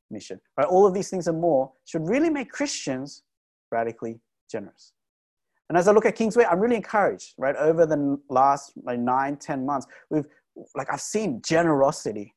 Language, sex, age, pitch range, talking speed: English, male, 20-39, 130-170 Hz, 180 wpm